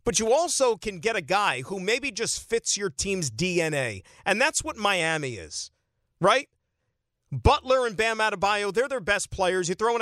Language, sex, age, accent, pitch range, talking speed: English, male, 50-69, American, 160-235 Hz, 185 wpm